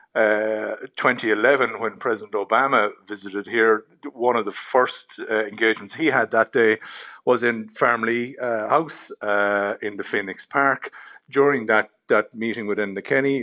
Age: 50-69